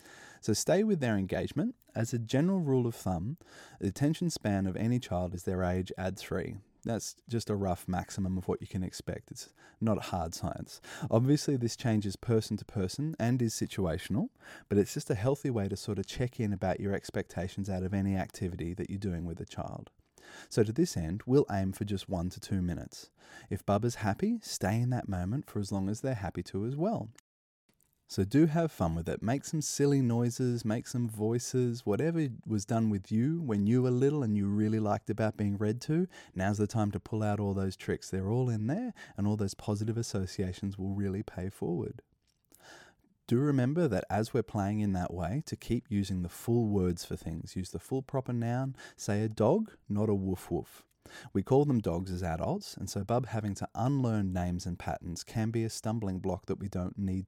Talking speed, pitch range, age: 215 wpm, 95-120 Hz, 20-39